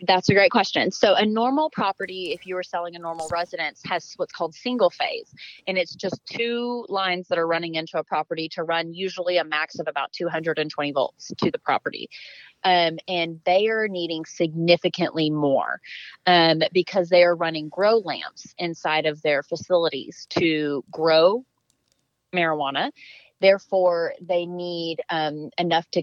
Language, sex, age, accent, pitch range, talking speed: English, female, 30-49, American, 160-190 Hz, 160 wpm